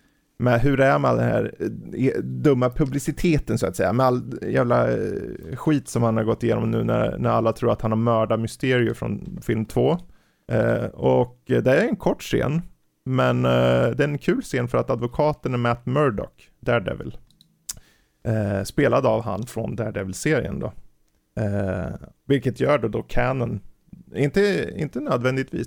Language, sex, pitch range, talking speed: Swedish, male, 110-135 Hz, 170 wpm